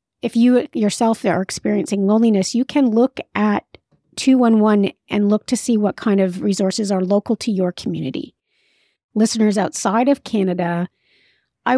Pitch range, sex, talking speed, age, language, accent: 185-235 Hz, female, 150 wpm, 40-59, English, American